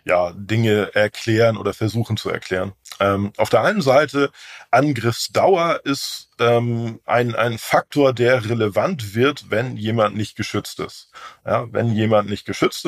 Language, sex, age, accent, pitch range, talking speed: German, male, 40-59, German, 105-125 Hz, 145 wpm